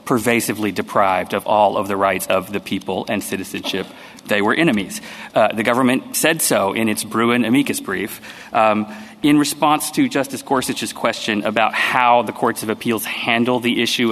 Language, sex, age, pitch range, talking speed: English, male, 30-49, 105-120 Hz, 175 wpm